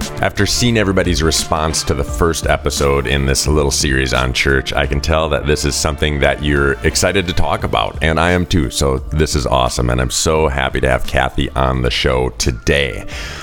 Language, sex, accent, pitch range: English, male, American, 65-80 Hz